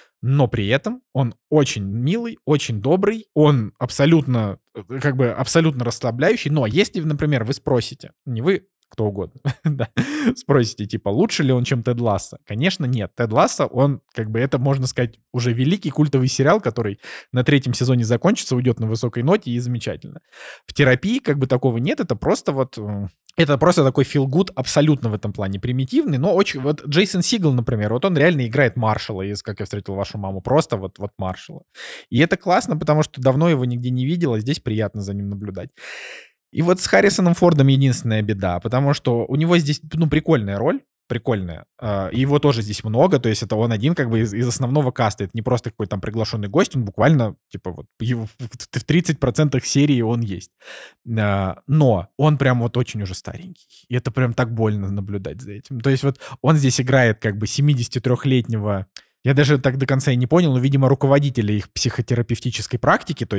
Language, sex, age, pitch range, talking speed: Russian, male, 20-39, 115-150 Hz, 185 wpm